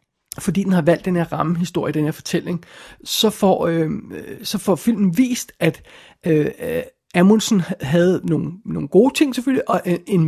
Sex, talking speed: male, 165 wpm